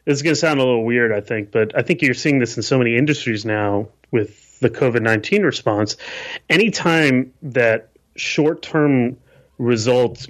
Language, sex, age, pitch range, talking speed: English, male, 30-49, 115-145 Hz, 165 wpm